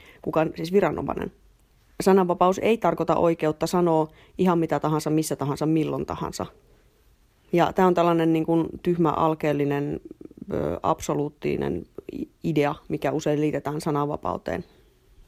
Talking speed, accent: 115 wpm, Finnish